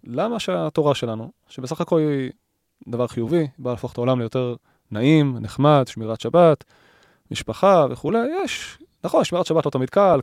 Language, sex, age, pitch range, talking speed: Hebrew, male, 20-39, 125-155 Hz, 155 wpm